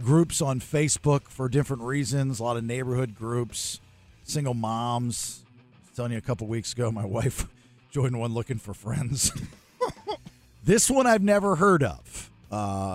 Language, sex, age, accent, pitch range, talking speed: English, male, 50-69, American, 105-150 Hz, 155 wpm